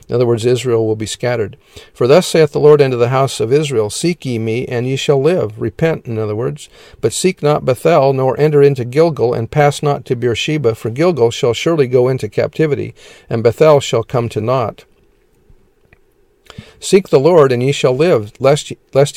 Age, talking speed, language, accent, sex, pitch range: 50-69, 195 wpm, English, American, male, 115-145 Hz